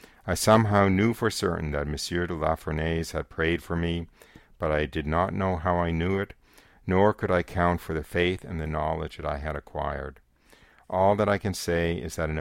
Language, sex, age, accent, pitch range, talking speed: English, male, 50-69, American, 75-90 Hz, 220 wpm